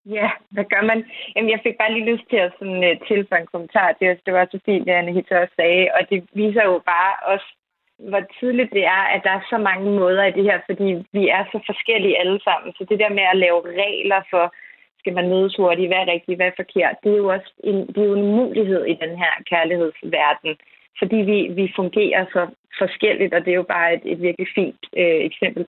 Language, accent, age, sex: Danish, native, 30-49, female